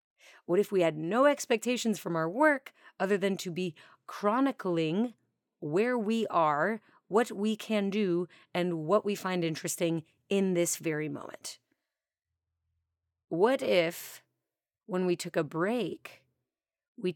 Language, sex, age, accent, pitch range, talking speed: English, female, 30-49, American, 160-205 Hz, 135 wpm